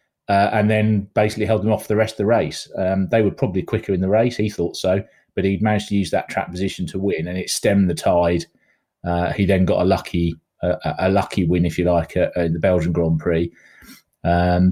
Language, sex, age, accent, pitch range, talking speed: English, male, 30-49, British, 90-100 Hz, 240 wpm